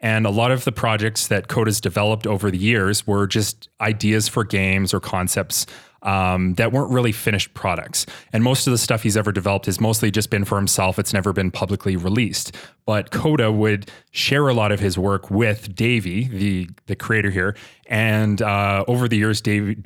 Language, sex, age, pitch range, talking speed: English, male, 30-49, 100-120 Hz, 195 wpm